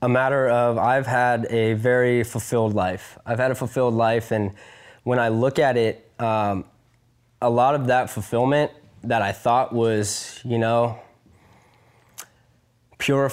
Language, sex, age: English, male, 10-29